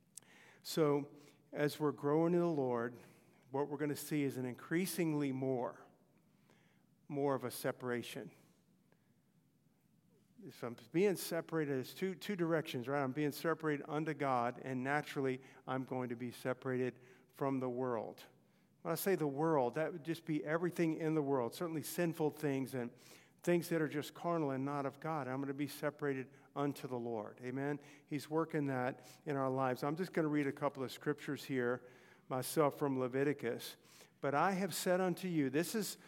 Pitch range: 135-165 Hz